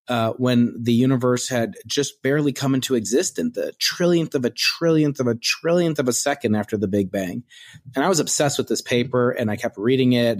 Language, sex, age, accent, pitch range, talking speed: English, male, 30-49, American, 110-130 Hz, 210 wpm